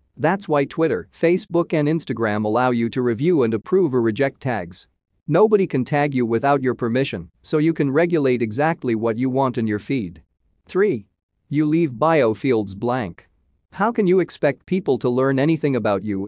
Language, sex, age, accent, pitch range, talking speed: English, male, 40-59, American, 110-150 Hz, 180 wpm